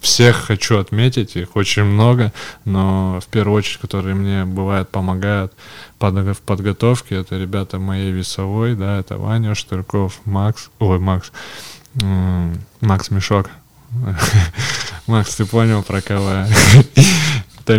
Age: 20-39